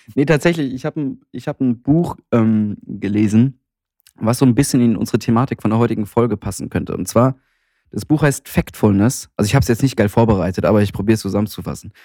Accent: German